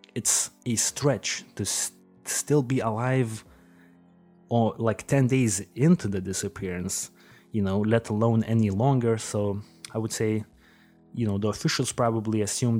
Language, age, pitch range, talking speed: English, 20-39, 100-125 Hz, 145 wpm